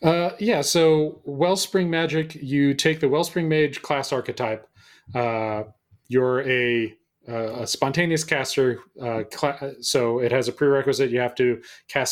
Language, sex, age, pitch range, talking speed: English, male, 30-49, 115-150 Hz, 150 wpm